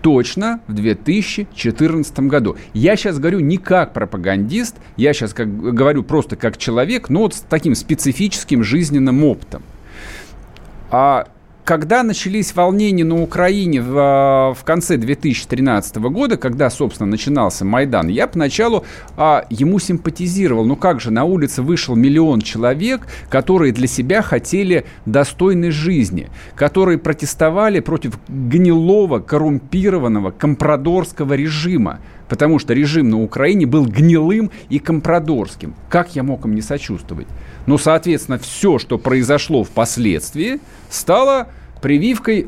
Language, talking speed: Russian, 125 wpm